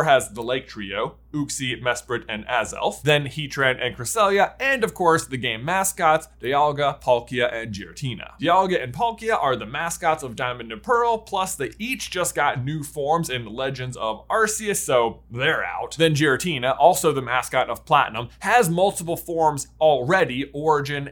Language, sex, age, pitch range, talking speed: English, male, 20-39, 125-180 Hz, 165 wpm